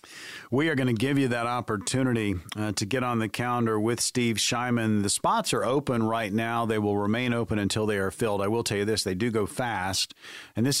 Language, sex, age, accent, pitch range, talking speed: English, male, 40-59, American, 105-130 Hz, 235 wpm